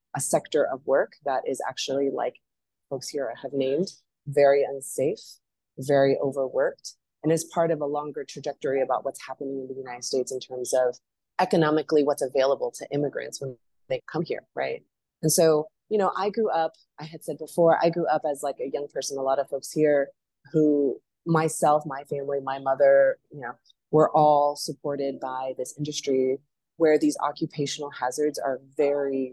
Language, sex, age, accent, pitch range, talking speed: English, female, 30-49, American, 135-160 Hz, 180 wpm